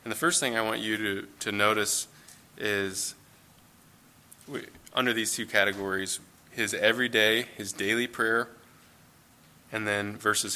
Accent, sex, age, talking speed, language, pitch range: American, male, 20-39, 130 wpm, English, 95-110 Hz